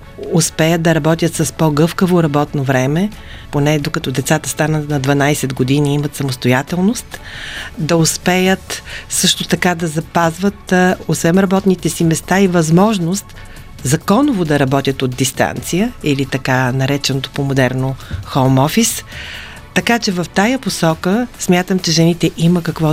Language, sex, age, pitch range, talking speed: Bulgarian, female, 40-59, 145-180 Hz, 130 wpm